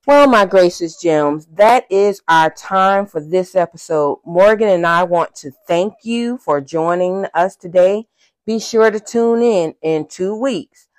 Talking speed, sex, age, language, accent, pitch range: 165 wpm, female, 40-59, English, American, 155-200 Hz